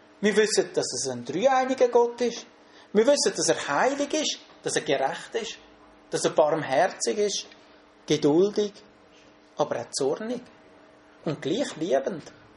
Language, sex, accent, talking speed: English, male, Austrian, 135 wpm